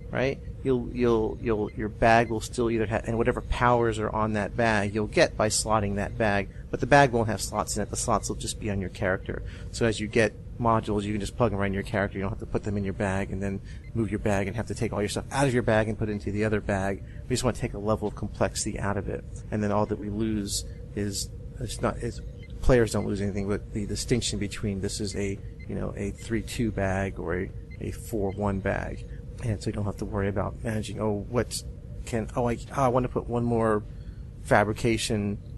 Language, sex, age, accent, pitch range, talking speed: English, male, 30-49, American, 100-115 Hz, 255 wpm